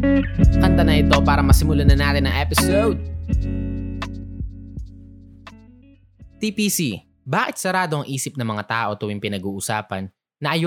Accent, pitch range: native, 110-175 Hz